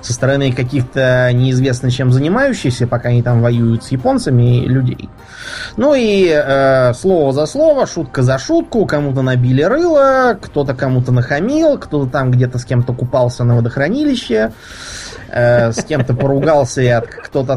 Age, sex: 20-39, male